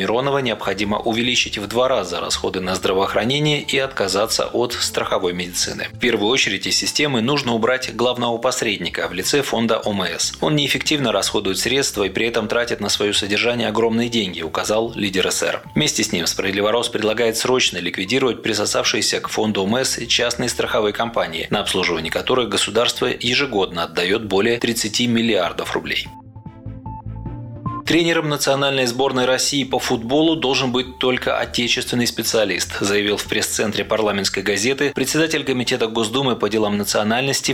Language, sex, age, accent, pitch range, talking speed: Russian, male, 30-49, native, 105-130 Hz, 145 wpm